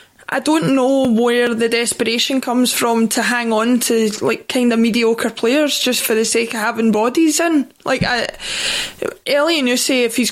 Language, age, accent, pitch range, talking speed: English, 20-39, British, 220-250 Hz, 175 wpm